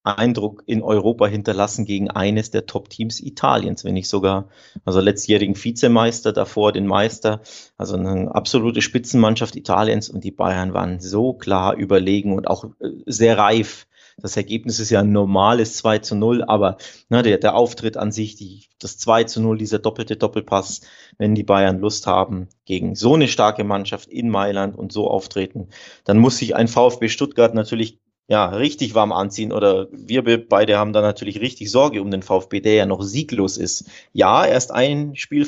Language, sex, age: German, male, 30-49